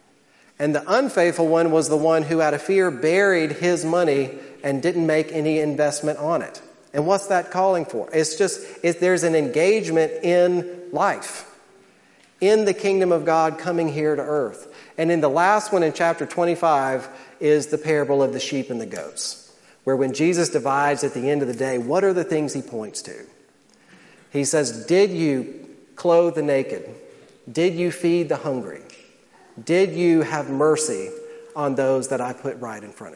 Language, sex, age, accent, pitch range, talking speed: English, male, 40-59, American, 140-175 Hz, 180 wpm